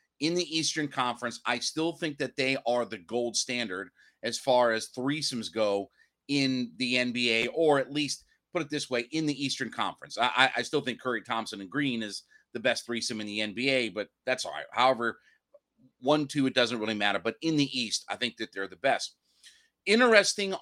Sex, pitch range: male, 120-145 Hz